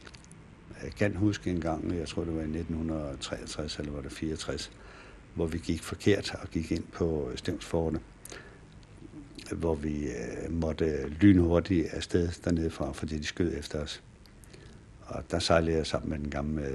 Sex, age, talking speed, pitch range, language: male, 60-79, 160 wpm, 85-105 Hz, Danish